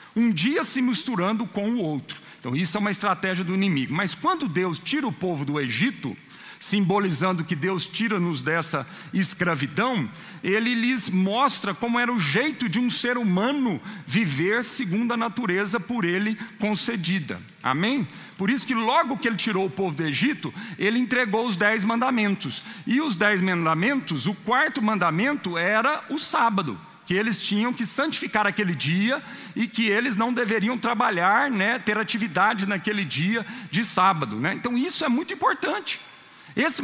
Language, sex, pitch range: Portuguese, male, 175-235 Hz